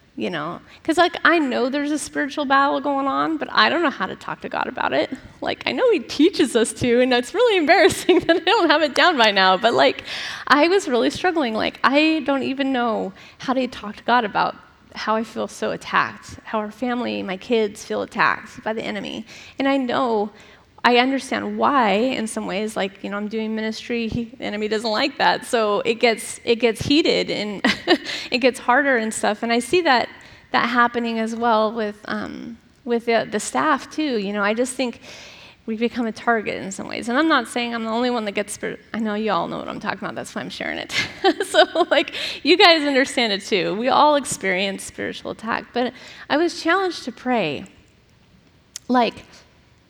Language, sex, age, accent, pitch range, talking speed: English, female, 30-49, American, 215-285 Hz, 215 wpm